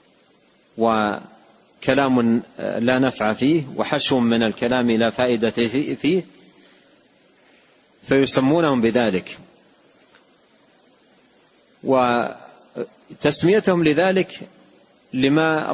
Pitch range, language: 115-145 Hz, Arabic